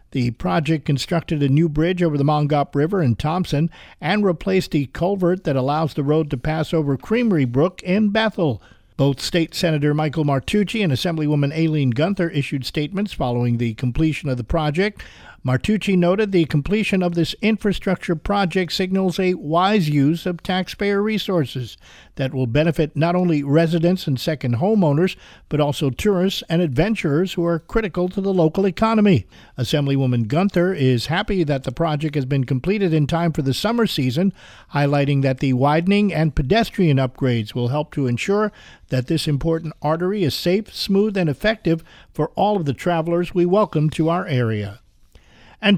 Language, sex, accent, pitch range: English, male, American, 140-180 Hz